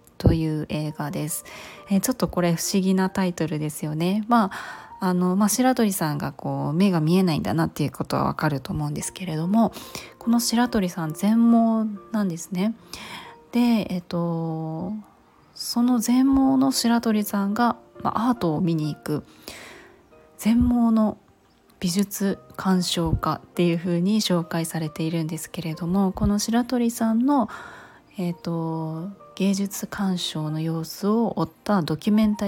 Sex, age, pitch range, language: female, 20-39, 165-220 Hz, Japanese